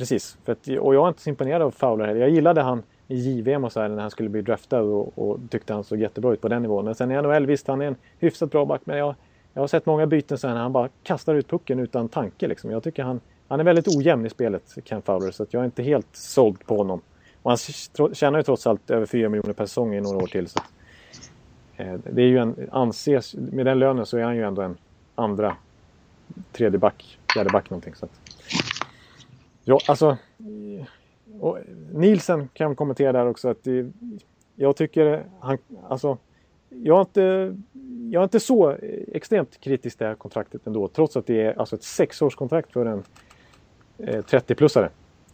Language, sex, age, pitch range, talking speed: Swedish, male, 30-49, 110-145 Hz, 215 wpm